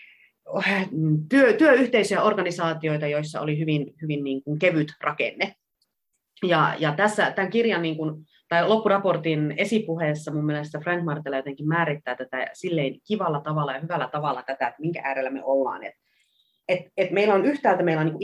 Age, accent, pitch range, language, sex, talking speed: 30-49, native, 145-195 Hz, Finnish, female, 160 wpm